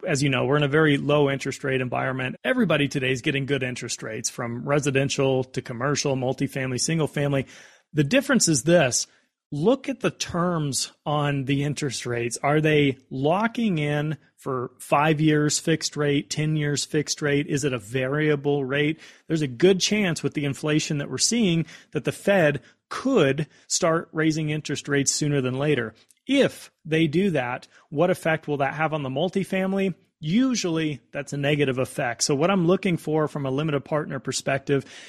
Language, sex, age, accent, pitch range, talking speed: English, male, 30-49, American, 140-170 Hz, 175 wpm